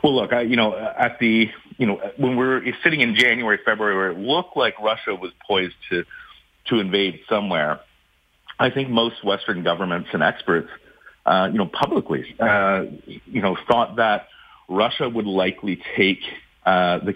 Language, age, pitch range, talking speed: English, 40-59, 95-115 Hz, 170 wpm